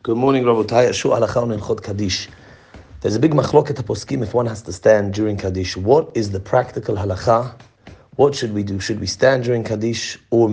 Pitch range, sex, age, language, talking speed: 105-125 Hz, male, 30-49, English, 180 wpm